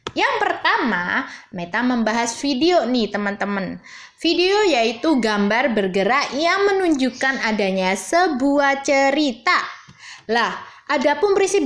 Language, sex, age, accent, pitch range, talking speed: Indonesian, female, 20-39, native, 220-320 Hz, 100 wpm